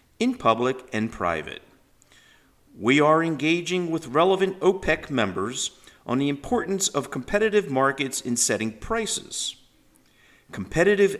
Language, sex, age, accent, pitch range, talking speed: English, male, 50-69, American, 105-175 Hz, 115 wpm